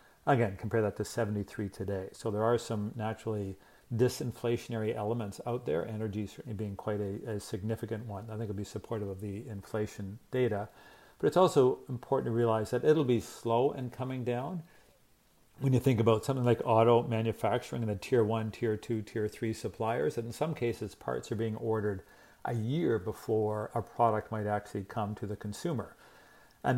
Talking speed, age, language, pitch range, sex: 185 wpm, 50-69, English, 105-120 Hz, male